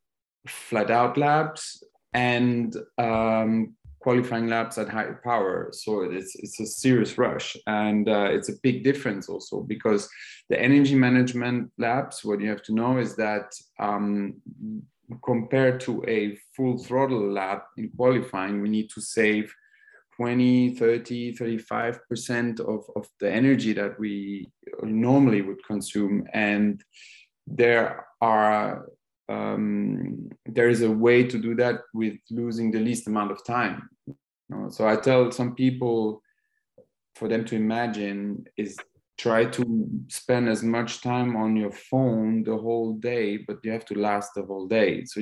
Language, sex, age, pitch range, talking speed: English, male, 30-49, 105-120 Hz, 145 wpm